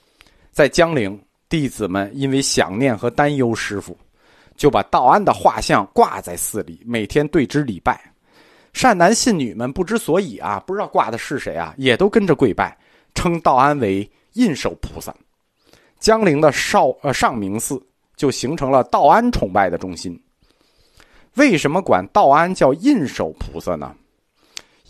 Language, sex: Chinese, male